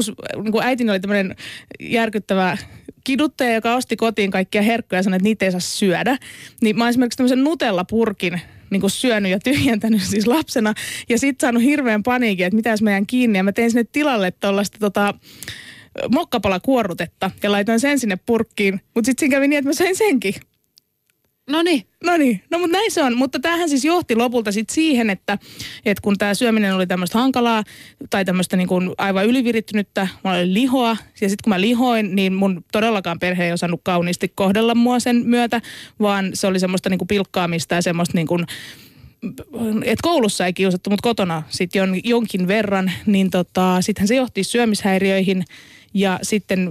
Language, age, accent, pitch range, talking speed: Finnish, 20-39, native, 190-240 Hz, 180 wpm